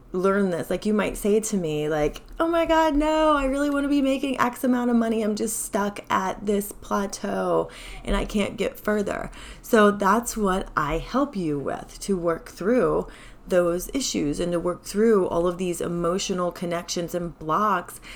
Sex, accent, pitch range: female, American, 170-230 Hz